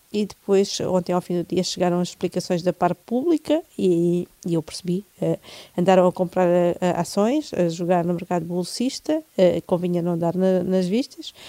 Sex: female